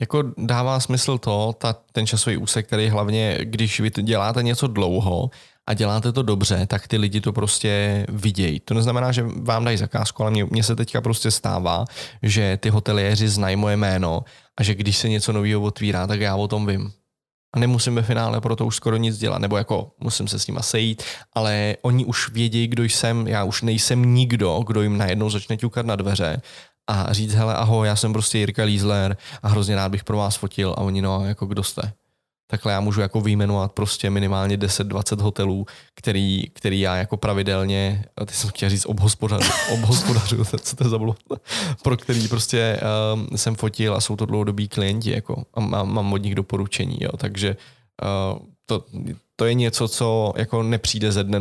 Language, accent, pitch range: Czech, native, 100-115 Hz